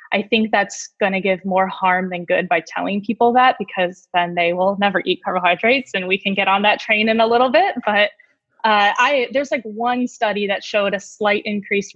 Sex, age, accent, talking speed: female, 10-29, American, 220 wpm